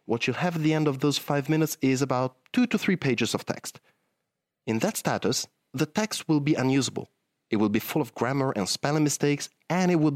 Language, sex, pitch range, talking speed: English, male, 115-160 Hz, 225 wpm